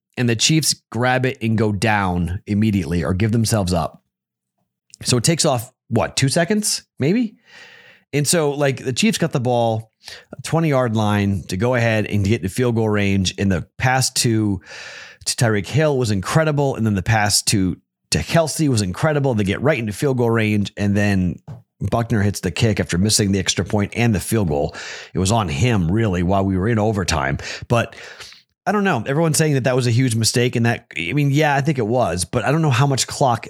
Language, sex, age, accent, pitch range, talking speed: English, male, 30-49, American, 100-130 Hz, 210 wpm